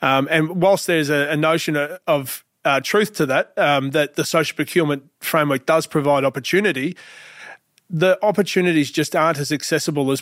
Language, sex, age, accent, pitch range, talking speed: English, male, 30-49, Australian, 140-165 Hz, 165 wpm